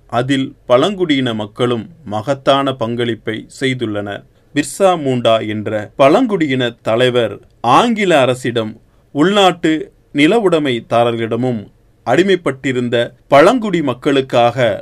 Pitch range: 115-145 Hz